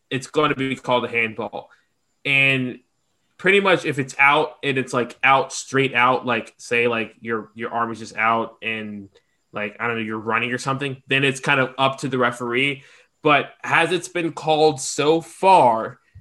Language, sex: English, male